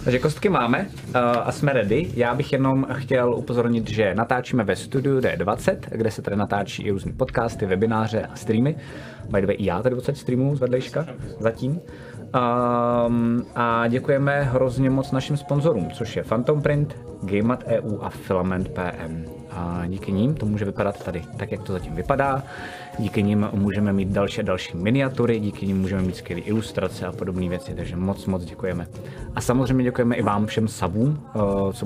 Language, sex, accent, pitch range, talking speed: Czech, male, native, 100-125 Hz, 165 wpm